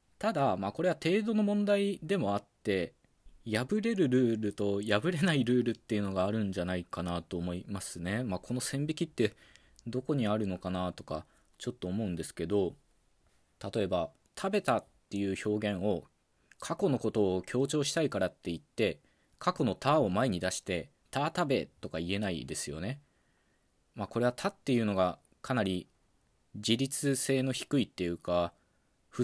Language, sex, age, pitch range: Japanese, male, 20-39, 95-140 Hz